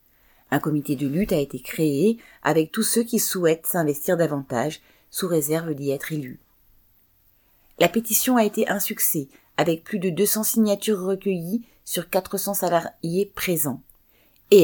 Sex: female